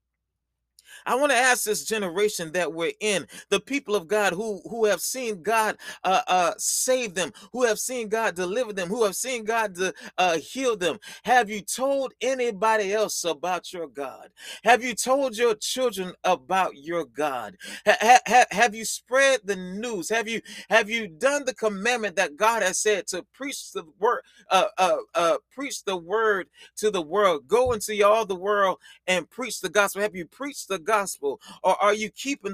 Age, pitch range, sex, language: 30-49, 175-230 Hz, male, English